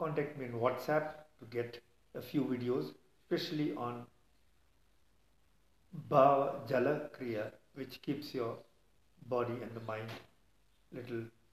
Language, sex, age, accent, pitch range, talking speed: English, male, 50-69, Indian, 110-135 Hz, 115 wpm